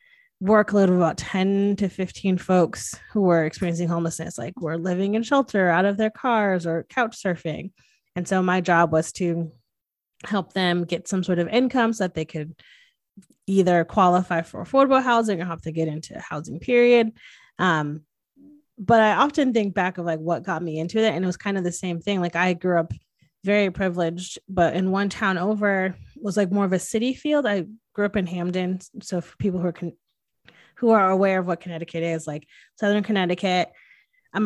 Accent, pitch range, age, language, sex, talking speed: American, 170-205 Hz, 20-39, English, female, 195 wpm